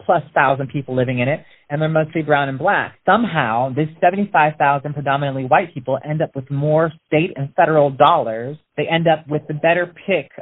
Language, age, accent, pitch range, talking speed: English, 30-49, American, 140-165 Hz, 190 wpm